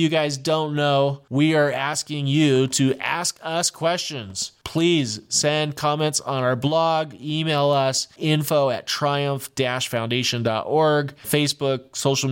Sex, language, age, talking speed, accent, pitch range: male, English, 20-39, 120 wpm, American, 120-150 Hz